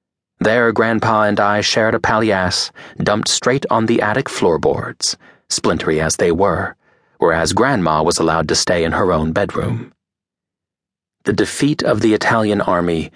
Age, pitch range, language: 30-49, 95-145 Hz, English